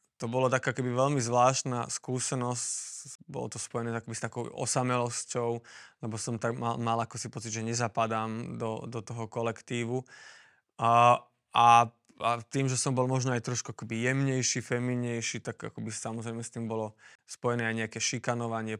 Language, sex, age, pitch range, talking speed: Slovak, male, 20-39, 115-125 Hz, 165 wpm